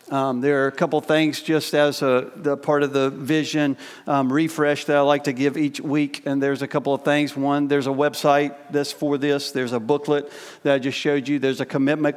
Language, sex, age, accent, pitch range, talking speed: English, male, 40-59, American, 135-145 Hz, 235 wpm